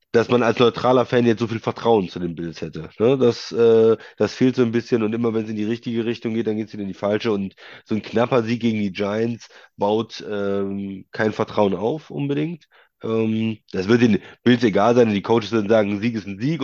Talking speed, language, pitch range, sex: 225 wpm, German, 100-120 Hz, male